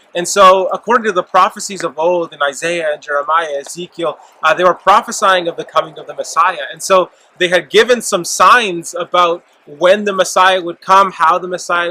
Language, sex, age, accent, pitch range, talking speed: English, male, 20-39, American, 165-195 Hz, 195 wpm